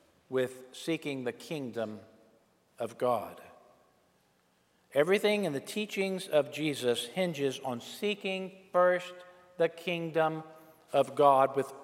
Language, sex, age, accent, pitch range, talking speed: English, male, 50-69, American, 140-190 Hz, 105 wpm